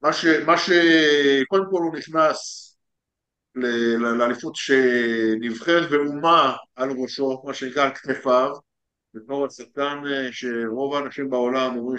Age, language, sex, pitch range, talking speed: 50-69, Hebrew, male, 115-160 Hz, 100 wpm